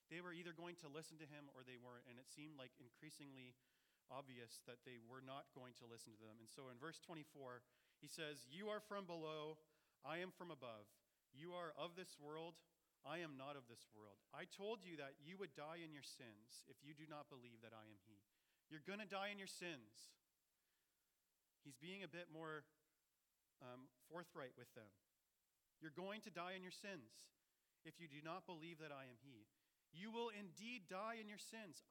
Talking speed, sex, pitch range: 205 wpm, male, 125-170 Hz